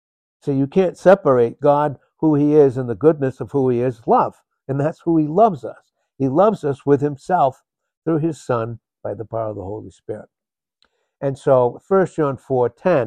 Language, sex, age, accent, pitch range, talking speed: English, male, 60-79, American, 115-150 Hz, 190 wpm